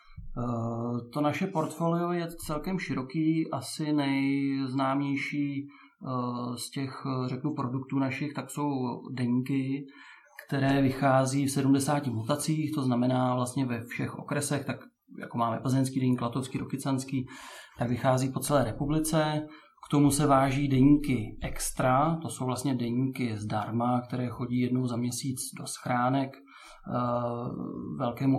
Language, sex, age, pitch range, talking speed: Czech, male, 30-49, 125-140 Hz, 115 wpm